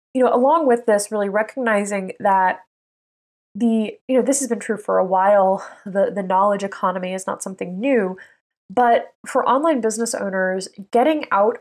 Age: 20-39